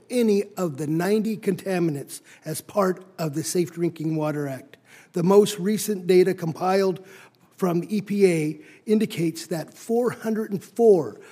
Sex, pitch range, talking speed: male, 160-200 Hz, 120 wpm